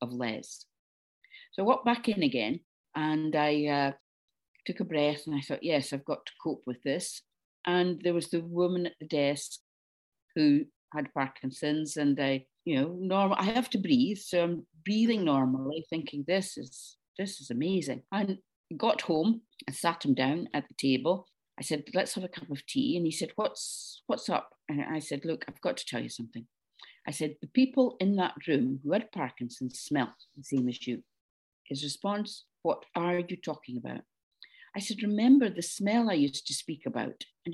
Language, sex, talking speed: English, female, 195 wpm